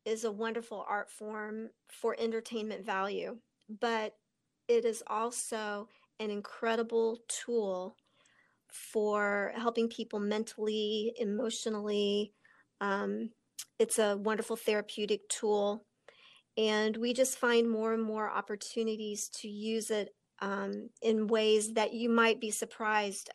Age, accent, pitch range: 40-59, American, 210-225 Hz